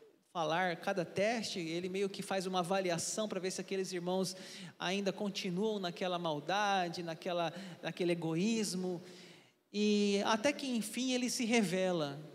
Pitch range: 170-205 Hz